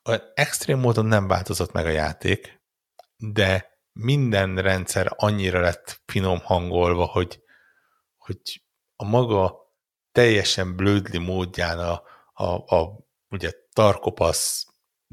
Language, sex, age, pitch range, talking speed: Hungarian, male, 60-79, 85-100 Hz, 105 wpm